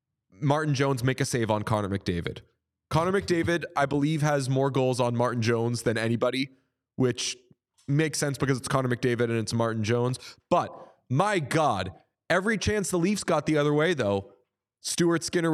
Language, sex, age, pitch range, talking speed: English, male, 20-39, 125-160 Hz, 175 wpm